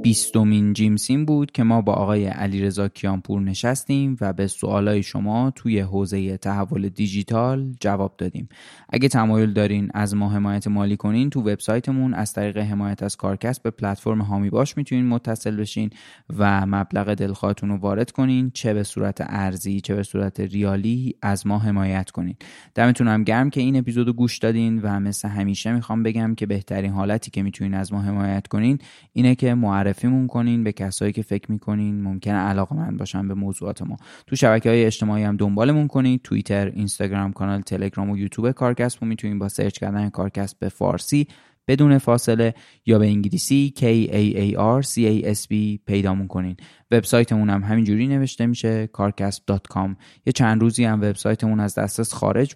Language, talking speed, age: Persian, 170 wpm, 20-39